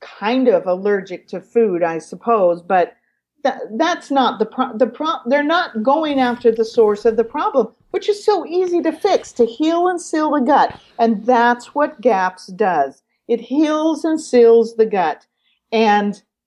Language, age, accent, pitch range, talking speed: English, 50-69, American, 220-300 Hz, 175 wpm